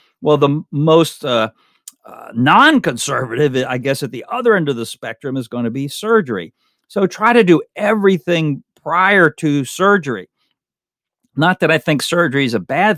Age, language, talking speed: 50-69, English, 165 wpm